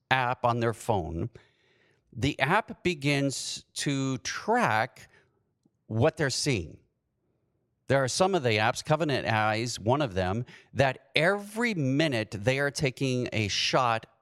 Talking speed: 130 wpm